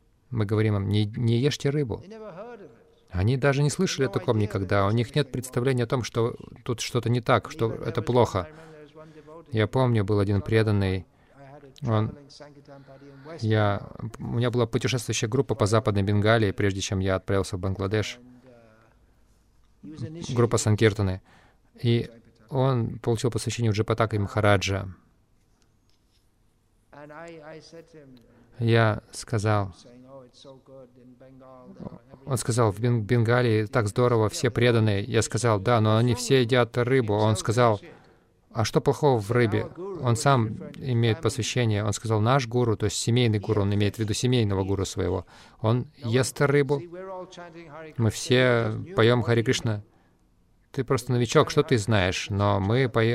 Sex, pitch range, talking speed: male, 110-130 Hz, 135 wpm